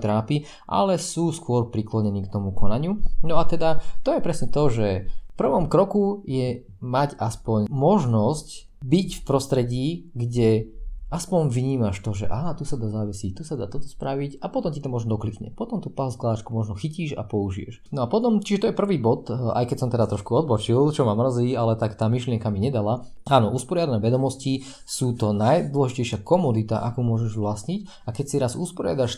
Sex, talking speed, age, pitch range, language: male, 190 wpm, 20-39, 110-140 Hz, Slovak